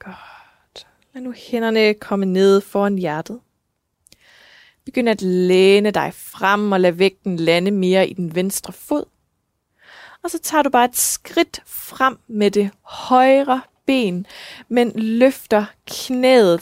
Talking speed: 135 wpm